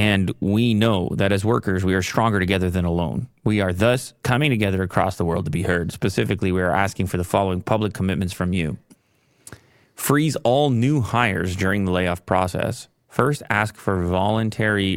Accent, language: American, English